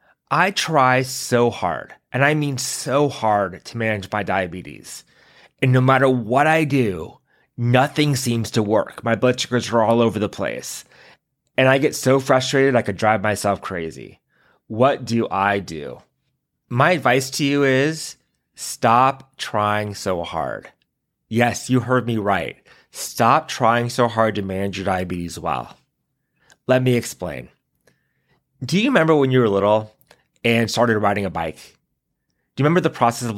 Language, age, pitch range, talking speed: English, 30-49, 110-140 Hz, 160 wpm